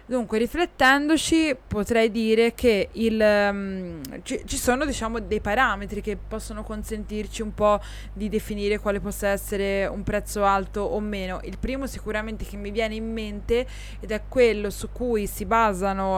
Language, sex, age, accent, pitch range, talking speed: Italian, female, 20-39, native, 200-235 Hz, 160 wpm